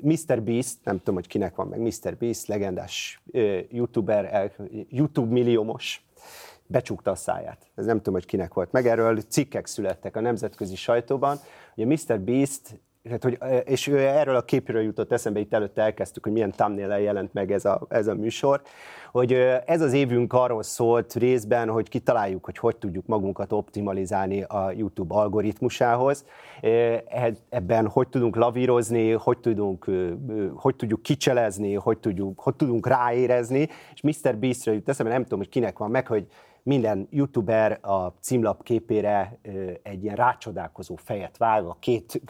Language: Hungarian